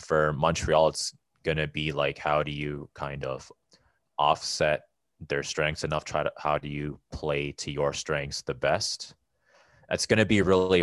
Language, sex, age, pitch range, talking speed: English, male, 20-39, 70-80 Hz, 175 wpm